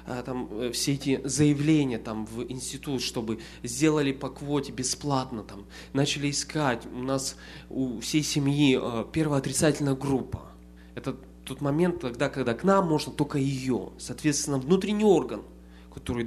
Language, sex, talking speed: English, male, 135 wpm